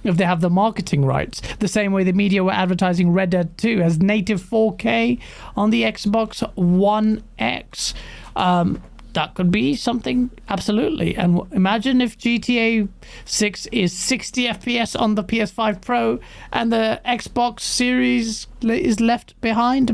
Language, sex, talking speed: English, male, 145 wpm